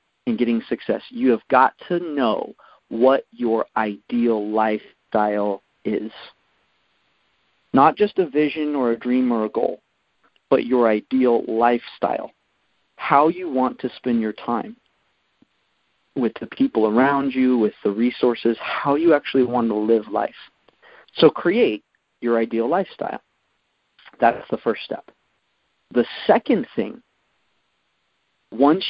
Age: 40-59